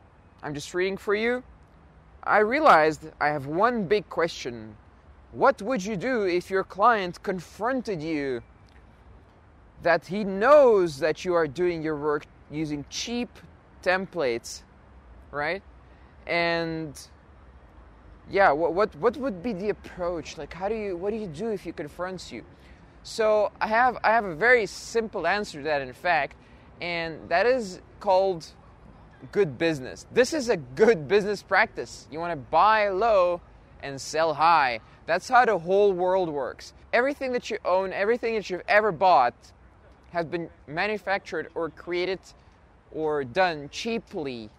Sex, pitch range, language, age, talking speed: male, 145-205 Hz, English, 20-39, 150 wpm